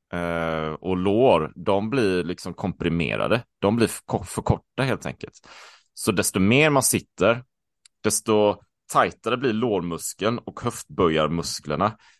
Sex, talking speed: male, 125 wpm